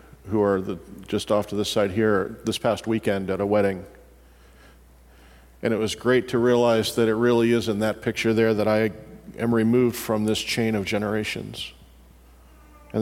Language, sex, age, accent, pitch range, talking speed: English, male, 40-59, American, 70-110 Hz, 175 wpm